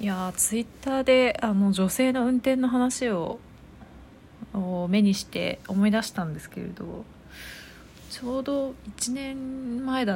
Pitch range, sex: 180-250 Hz, female